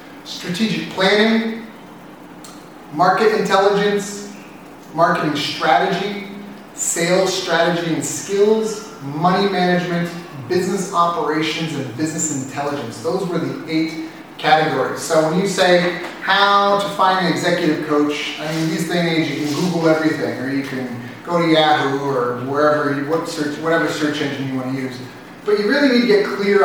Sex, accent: male, American